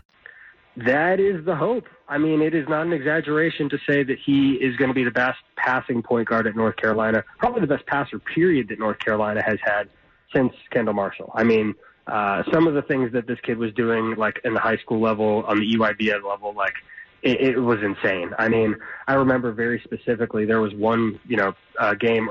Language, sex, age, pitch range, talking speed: English, male, 20-39, 110-150 Hz, 215 wpm